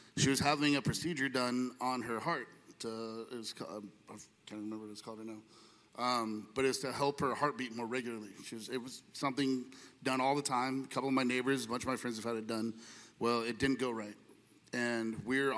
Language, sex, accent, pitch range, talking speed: English, male, American, 115-135 Hz, 230 wpm